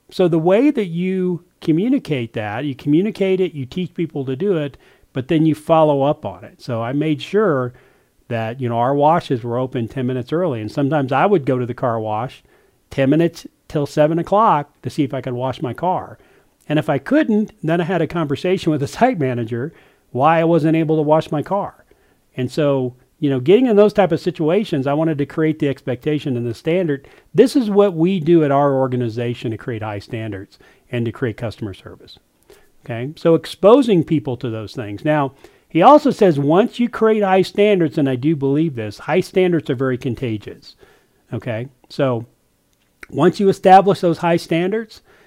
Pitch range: 130-175 Hz